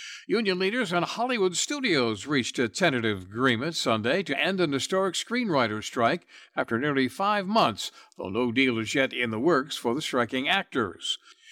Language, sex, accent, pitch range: English, male, American, 115-170 Hz